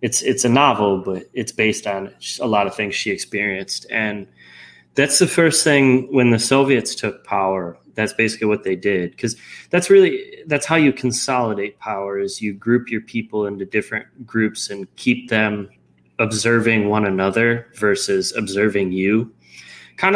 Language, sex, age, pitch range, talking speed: English, male, 20-39, 95-120 Hz, 165 wpm